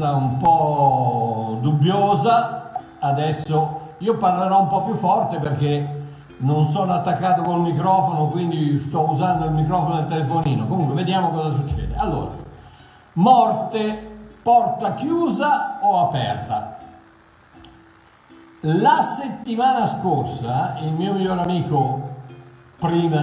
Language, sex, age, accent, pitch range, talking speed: Italian, male, 50-69, native, 150-195 Hz, 105 wpm